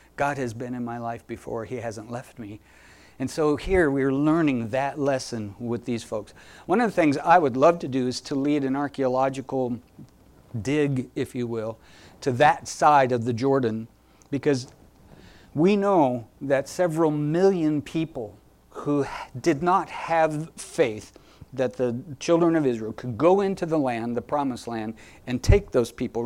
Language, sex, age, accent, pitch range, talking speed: English, male, 50-69, American, 120-160 Hz, 170 wpm